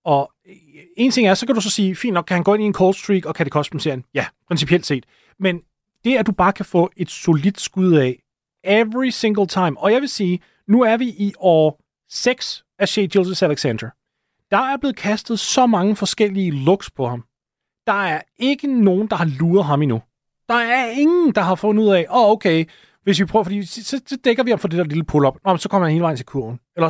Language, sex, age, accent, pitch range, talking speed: Danish, male, 30-49, native, 140-205 Hz, 240 wpm